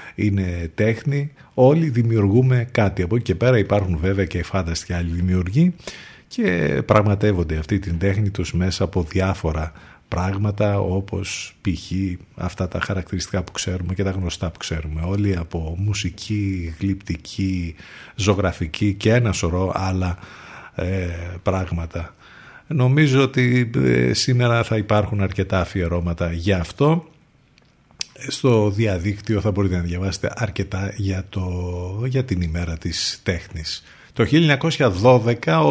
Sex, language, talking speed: male, Greek, 120 wpm